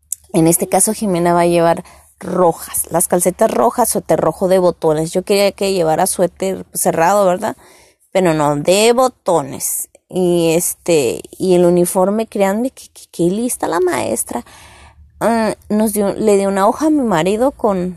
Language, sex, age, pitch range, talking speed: Spanish, female, 20-39, 170-220 Hz, 160 wpm